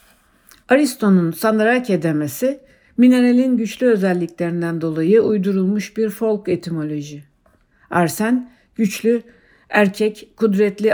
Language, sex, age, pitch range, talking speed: Turkish, female, 60-79, 165-225 Hz, 80 wpm